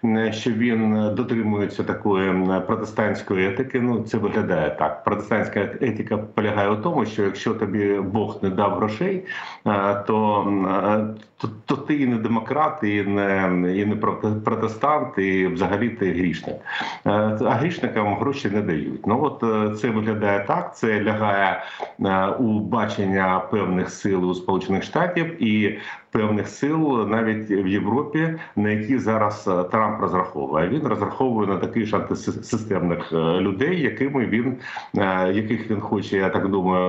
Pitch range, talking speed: 95-115 Hz, 135 wpm